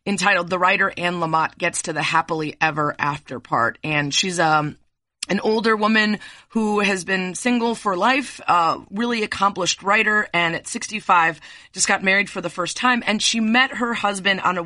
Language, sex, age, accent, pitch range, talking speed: English, female, 30-49, American, 165-210 Hz, 190 wpm